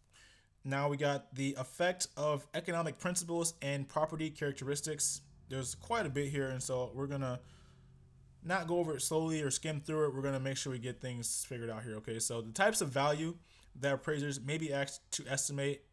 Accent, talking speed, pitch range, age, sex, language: American, 195 wpm, 130-160 Hz, 20-39, male, English